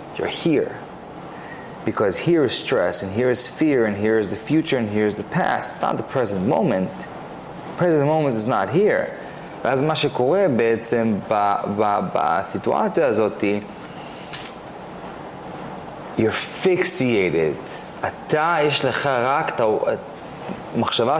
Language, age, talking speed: Hebrew, 30-49, 125 wpm